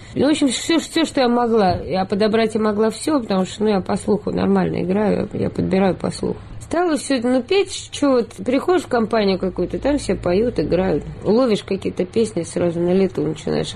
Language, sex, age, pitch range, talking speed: Russian, female, 20-39, 175-230 Hz, 200 wpm